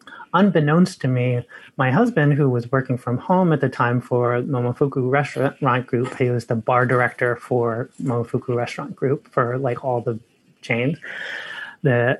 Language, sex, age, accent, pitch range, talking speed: English, male, 30-49, American, 125-155 Hz, 155 wpm